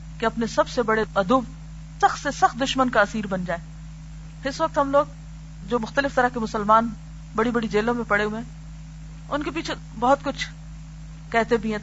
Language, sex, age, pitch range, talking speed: Urdu, female, 40-59, 160-245 Hz, 195 wpm